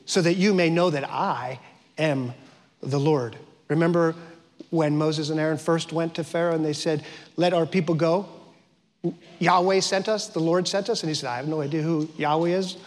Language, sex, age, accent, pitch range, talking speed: English, male, 40-59, American, 155-195 Hz, 200 wpm